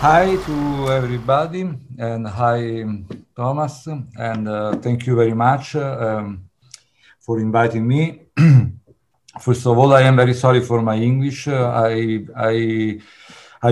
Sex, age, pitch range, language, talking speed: male, 50-69, 110-130 Hz, English, 125 wpm